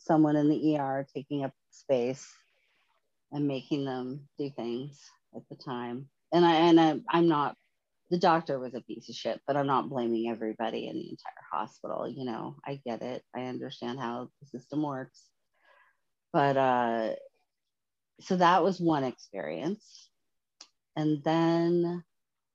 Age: 40-59